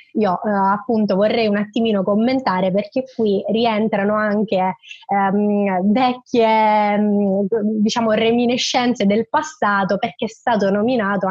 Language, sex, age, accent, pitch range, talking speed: Italian, female, 20-39, native, 200-235 Hz, 105 wpm